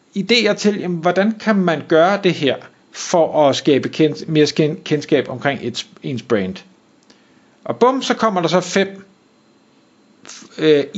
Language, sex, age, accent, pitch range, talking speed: Danish, male, 50-69, native, 155-215 Hz, 155 wpm